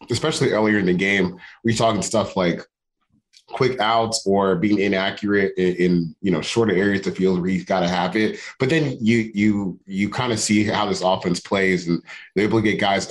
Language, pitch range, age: English, 90-115 Hz, 30-49